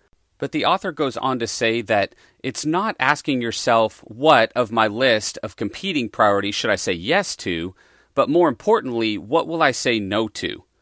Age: 40-59